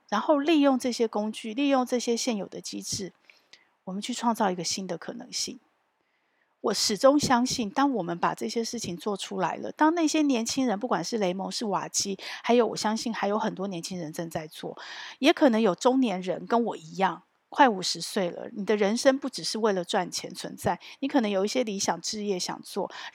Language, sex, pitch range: Chinese, female, 190-255 Hz